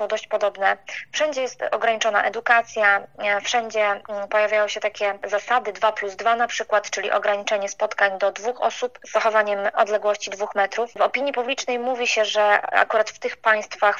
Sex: female